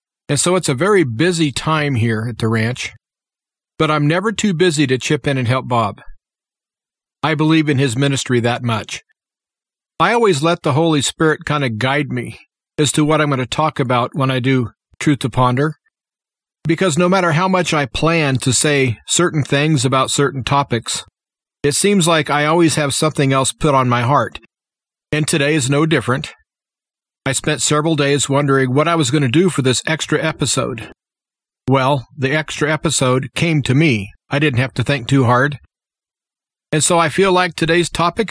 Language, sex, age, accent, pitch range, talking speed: English, male, 40-59, American, 135-160 Hz, 190 wpm